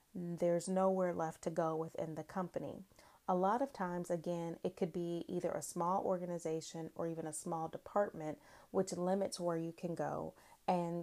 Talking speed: 175 wpm